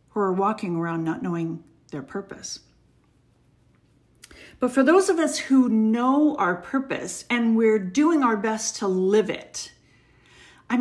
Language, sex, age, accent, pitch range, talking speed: English, female, 50-69, American, 225-285 Hz, 145 wpm